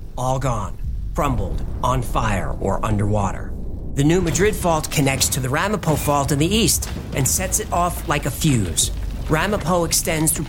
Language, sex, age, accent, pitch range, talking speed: English, male, 40-59, American, 105-160 Hz, 165 wpm